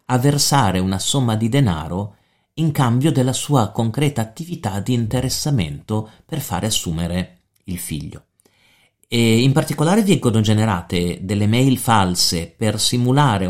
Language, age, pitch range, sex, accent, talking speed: Italian, 40-59, 95-130 Hz, male, native, 130 wpm